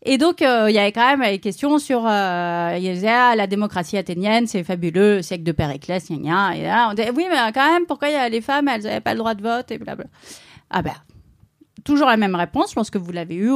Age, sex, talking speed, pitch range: 30-49, female, 245 wpm, 190-250 Hz